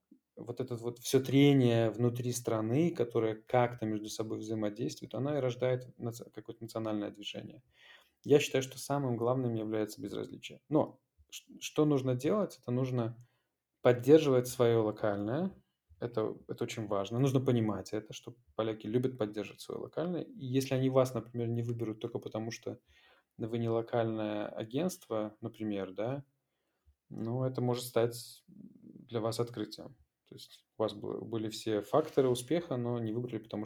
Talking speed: 145 wpm